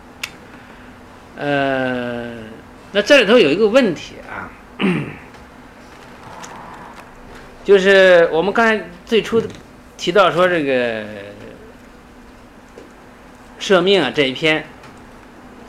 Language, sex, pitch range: Chinese, male, 135-200 Hz